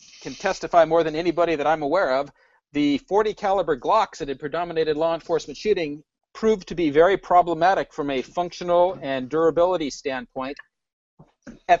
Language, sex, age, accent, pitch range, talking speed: English, male, 50-69, American, 150-195 Hz, 160 wpm